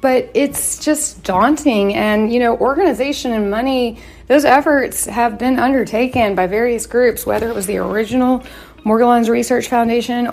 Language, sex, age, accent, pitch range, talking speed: English, female, 30-49, American, 195-240 Hz, 150 wpm